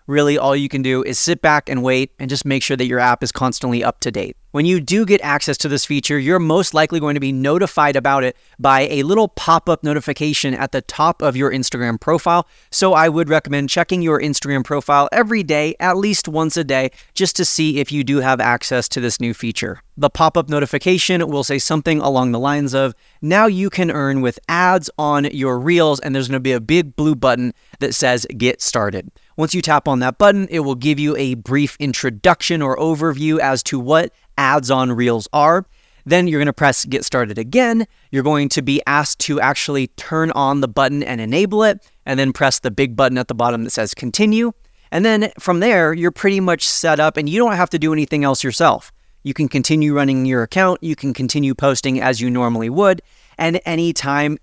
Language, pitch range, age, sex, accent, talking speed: English, 130-165 Hz, 30-49, male, American, 220 wpm